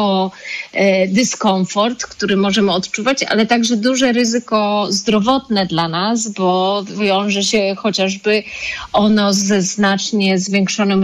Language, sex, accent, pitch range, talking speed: Polish, female, native, 190-230 Hz, 105 wpm